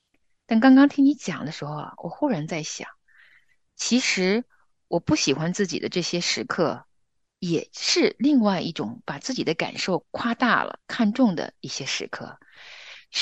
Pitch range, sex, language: 165-240 Hz, female, Chinese